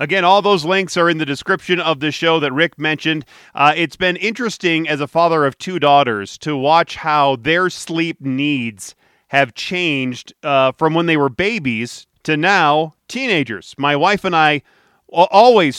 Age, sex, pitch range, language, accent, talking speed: 40-59, male, 155-195 Hz, English, American, 175 wpm